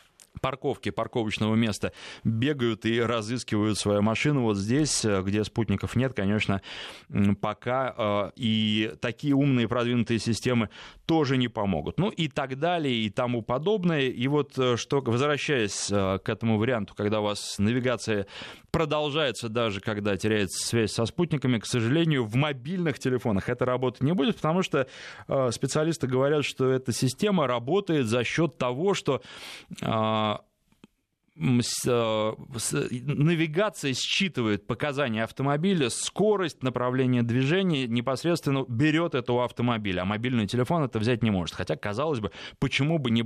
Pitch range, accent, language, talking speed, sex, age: 110-145 Hz, native, Russian, 135 wpm, male, 20-39